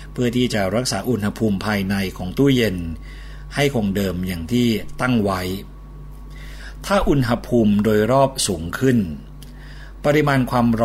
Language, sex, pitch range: Thai, male, 100-130 Hz